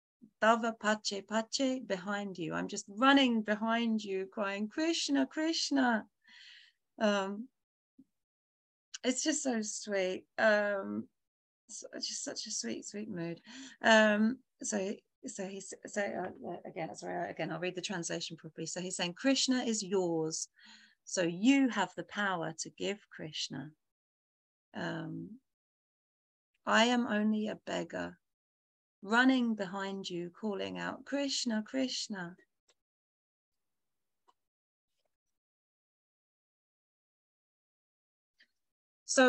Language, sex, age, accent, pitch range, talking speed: English, female, 30-49, British, 180-235 Hz, 105 wpm